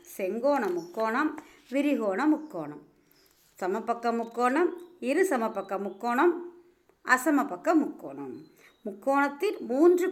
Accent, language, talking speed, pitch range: native, Tamil, 75 wpm, 200-310 Hz